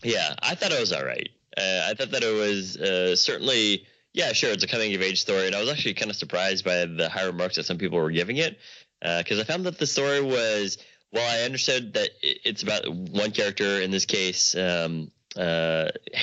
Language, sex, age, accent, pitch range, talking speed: English, male, 20-39, American, 90-105 Hz, 225 wpm